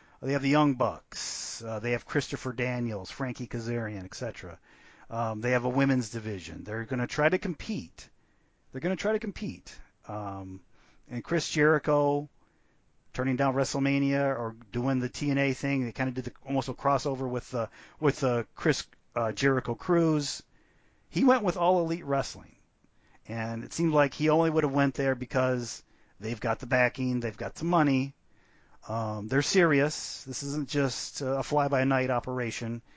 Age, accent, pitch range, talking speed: 40-59, American, 120-150 Hz, 170 wpm